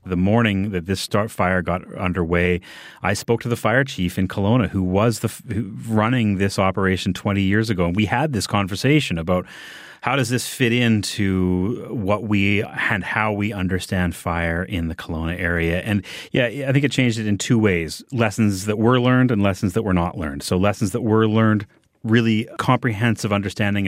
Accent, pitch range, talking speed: American, 95-115 Hz, 190 wpm